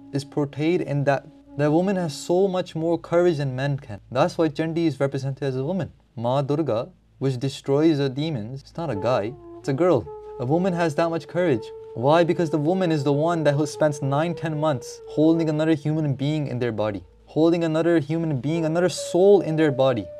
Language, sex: English, male